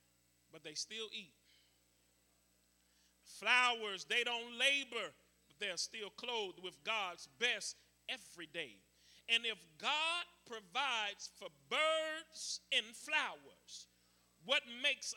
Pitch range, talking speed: 175-260 Hz, 105 wpm